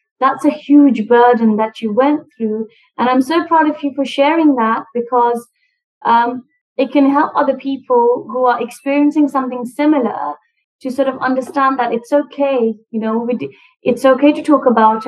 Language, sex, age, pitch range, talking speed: English, female, 20-39, 230-280 Hz, 170 wpm